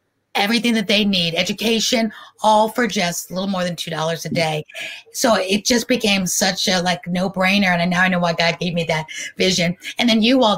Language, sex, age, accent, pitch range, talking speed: English, female, 30-49, American, 180-235 Hz, 215 wpm